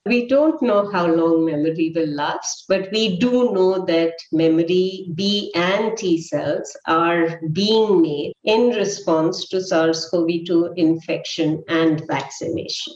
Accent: Indian